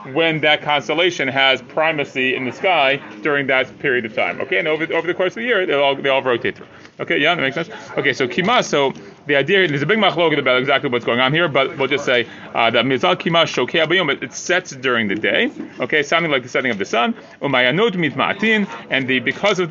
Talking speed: 215 wpm